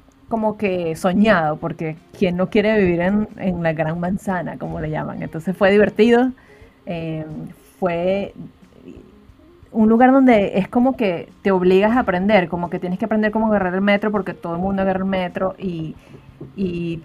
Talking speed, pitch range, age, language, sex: 170 wpm, 175-210 Hz, 30-49, Spanish, female